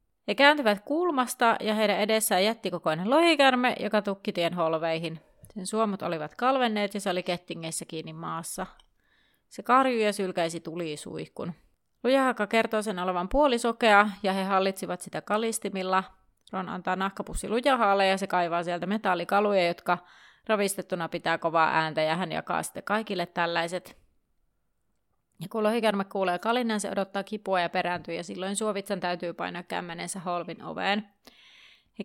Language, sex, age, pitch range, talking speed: Finnish, female, 30-49, 180-220 Hz, 145 wpm